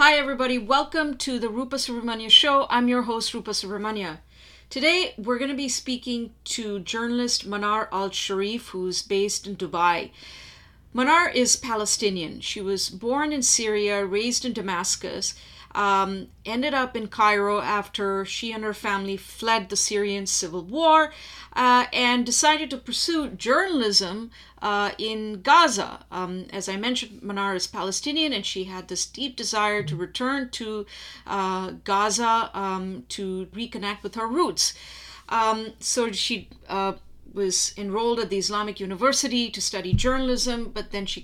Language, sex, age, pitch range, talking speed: English, female, 50-69, 195-245 Hz, 150 wpm